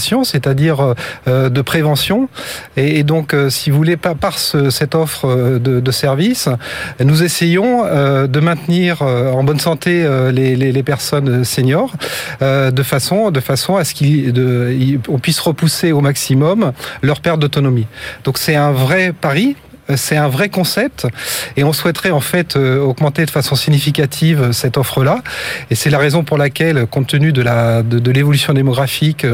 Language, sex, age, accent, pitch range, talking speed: French, male, 30-49, French, 135-160 Hz, 145 wpm